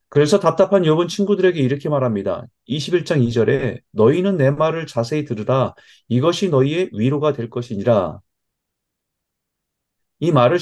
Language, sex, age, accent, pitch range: Korean, male, 30-49, native, 115-155 Hz